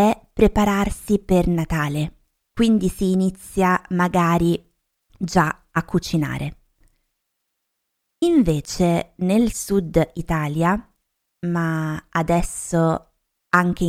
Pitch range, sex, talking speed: 160-195 Hz, female, 75 wpm